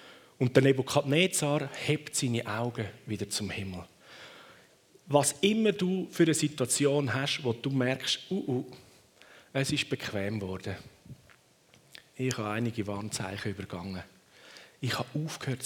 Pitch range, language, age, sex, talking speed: 110-145 Hz, German, 40-59, male, 125 wpm